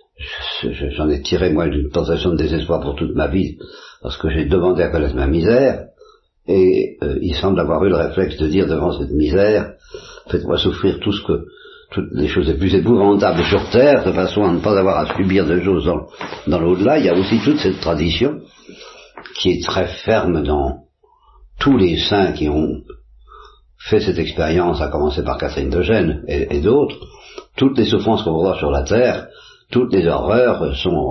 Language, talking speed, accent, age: French, 195 wpm, French, 60-79